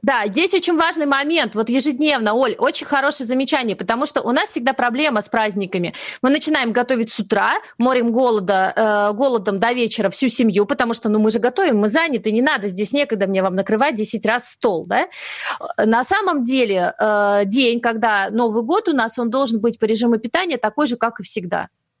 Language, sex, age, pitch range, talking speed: Russian, female, 30-49, 210-265 Hz, 195 wpm